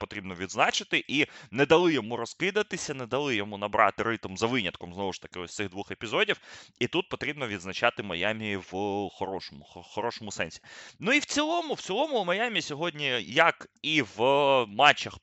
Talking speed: 175 wpm